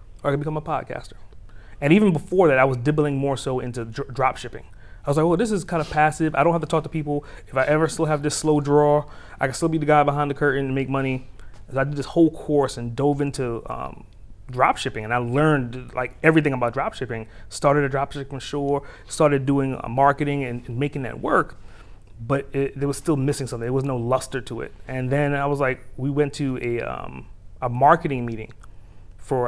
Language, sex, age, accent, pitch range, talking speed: English, male, 30-49, American, 115-145 Hz, 230 wpm